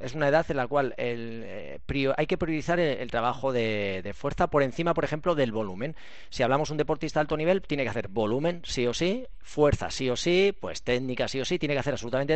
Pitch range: 120-155 Hz